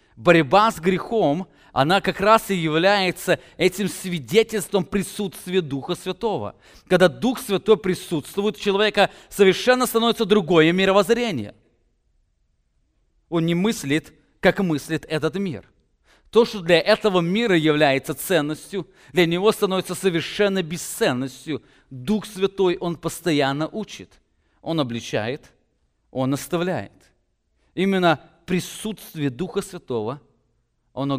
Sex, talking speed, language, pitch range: male, 110 wpm, English, 115-180 Hz